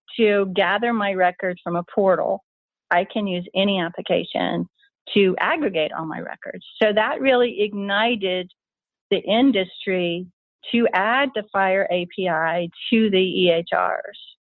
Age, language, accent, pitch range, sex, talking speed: 40-59, English, American, 180-220 Hz, female, 130 wpm